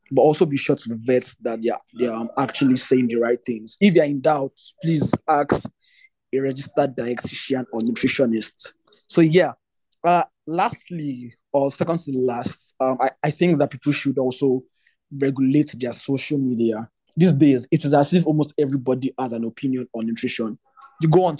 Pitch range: 125-155 Hz